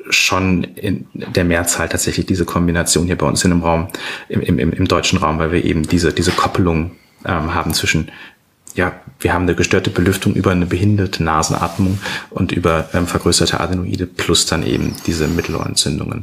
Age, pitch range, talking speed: 30-49, 85-105 Hz, 170 wpm